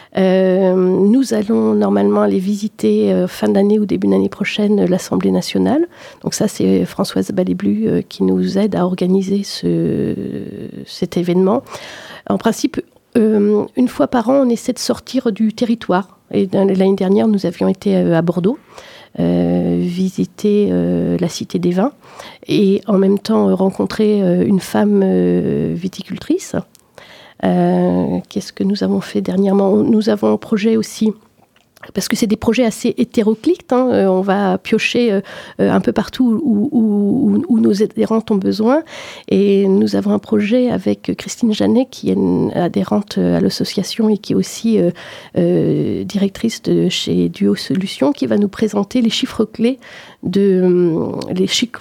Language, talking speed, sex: French, 155 wpm, female